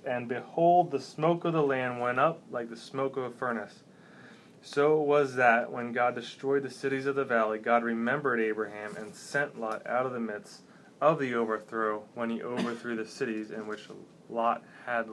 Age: 20-39